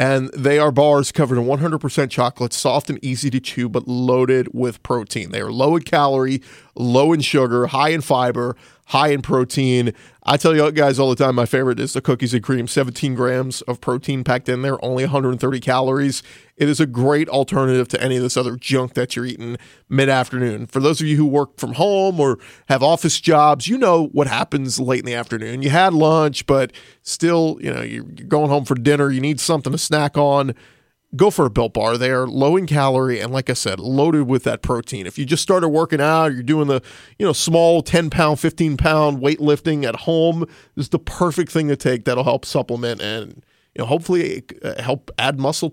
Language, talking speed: English, 215 wpm